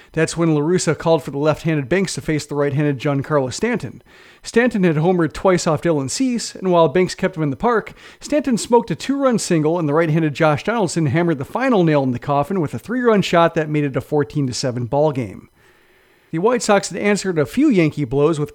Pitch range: 150-190 Hz